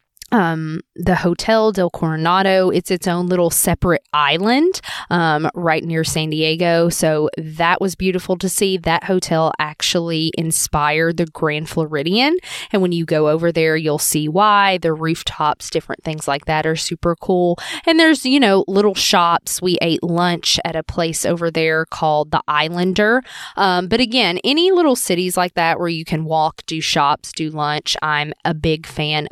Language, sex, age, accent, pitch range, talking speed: English, female, 20-39, American, 160-210 Hz, 170 wpm